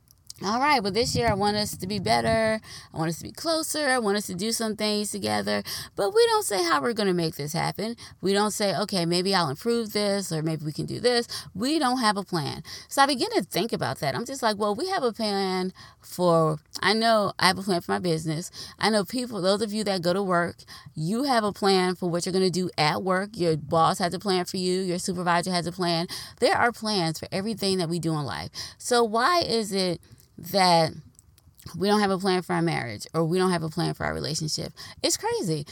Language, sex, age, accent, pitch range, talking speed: English, female, 20-39, American, 165-220 Hz, 250 wpm